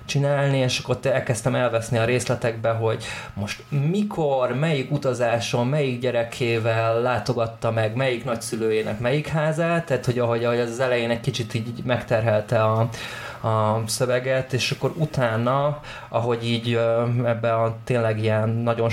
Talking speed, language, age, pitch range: 140 wpm, Hungarian, 20-39, 110-125 Hz